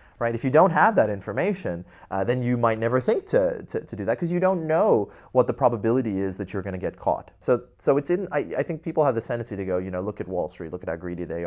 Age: 30-49